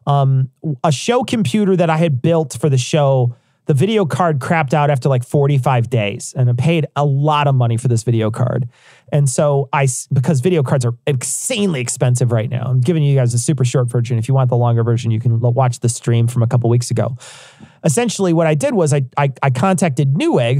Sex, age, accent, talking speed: male, 40-59, American, 220 wpm